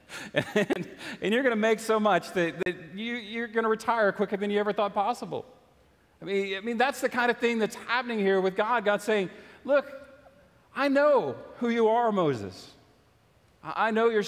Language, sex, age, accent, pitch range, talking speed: English, male, 40-59, American, 150-205 Hz, 200 wpm